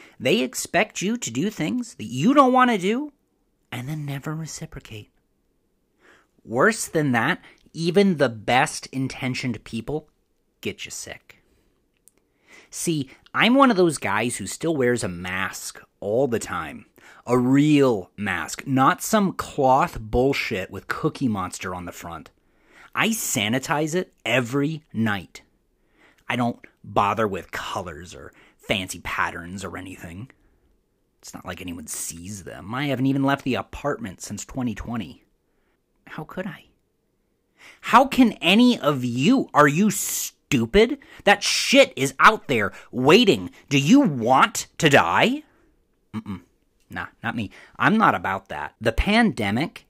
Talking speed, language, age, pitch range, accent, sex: 140 wpm, English, 30-49, 110-175 Hz, American, male